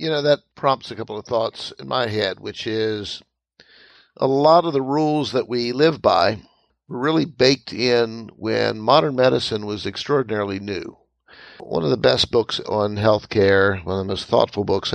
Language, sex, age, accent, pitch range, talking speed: English, male, 50-69, American, 95-120 Hz, 180 wpm